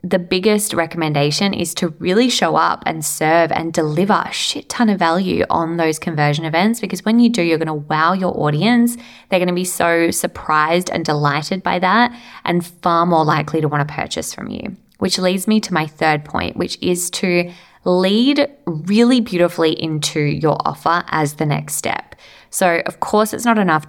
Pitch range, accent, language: 155-190 Hz, Australian, English